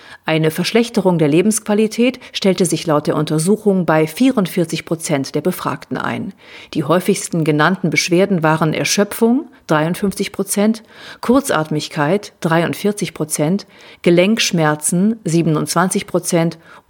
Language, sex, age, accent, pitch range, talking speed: German, female, 40-59, German, 165-210 Hz, 90 wpm